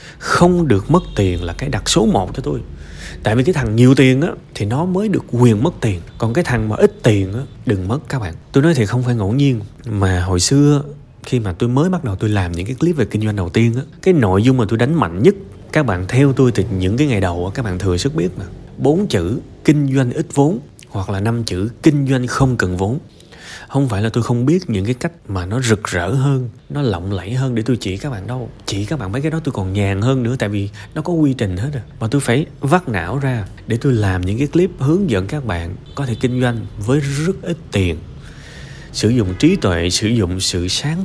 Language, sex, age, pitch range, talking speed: Vietnamese, male, 20-39, 100-140 Hz, 260 wpm